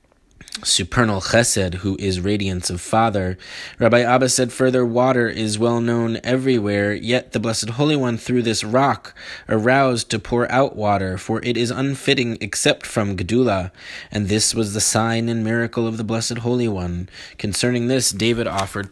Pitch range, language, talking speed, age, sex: 100-125 Hz, English, 165 wpm, 20-39, male